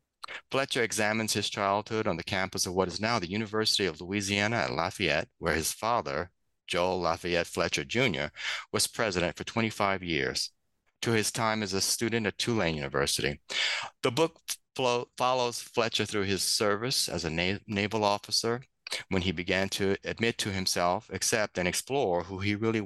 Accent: American